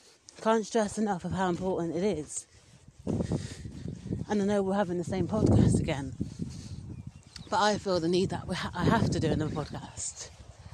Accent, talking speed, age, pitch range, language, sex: British, 160 wpm, 30-49, 155-205 Hz, English, female